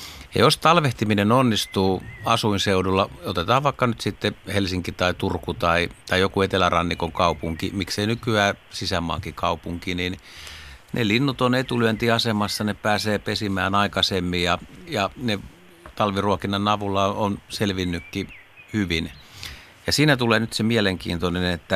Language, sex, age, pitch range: Finnish, male, 60-79, 85-105 Hz